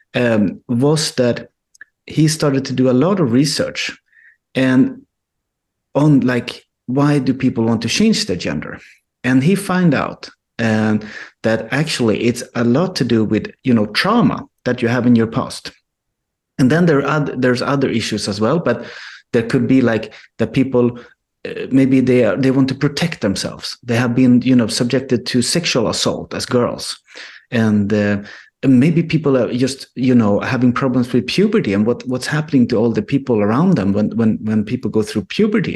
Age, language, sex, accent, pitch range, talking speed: 30-49, English, male, Swedish, 115-135 Hz, 185 wpm